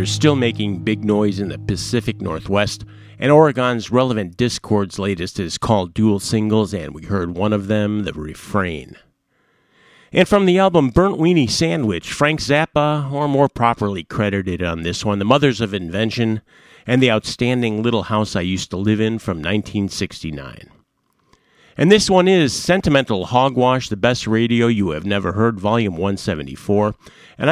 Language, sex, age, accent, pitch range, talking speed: English, male, 50-69, American, 100-125 Hz, 160 wpm